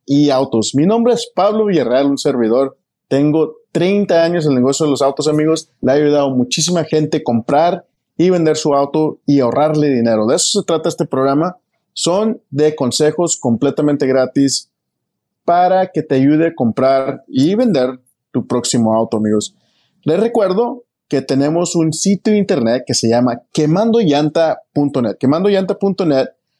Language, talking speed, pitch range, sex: English, 155 wpm, 135-180 Hz, male